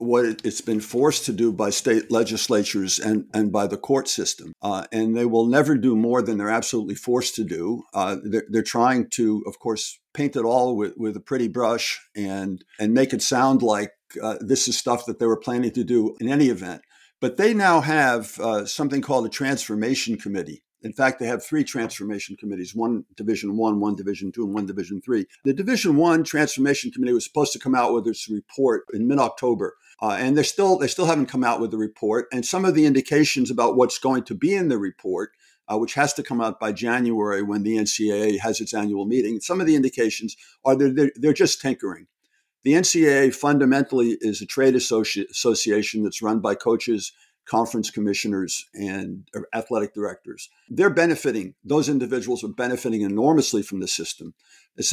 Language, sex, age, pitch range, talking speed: English, male, 50-69, 105-135 Hz, 195 wpm